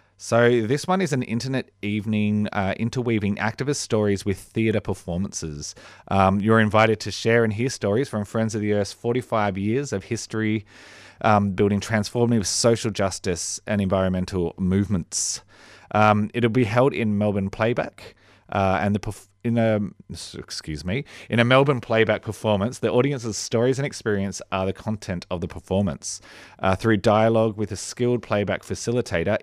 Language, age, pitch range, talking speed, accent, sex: English, 30-49, 100-120 Hz, 155 wpm, Australian, male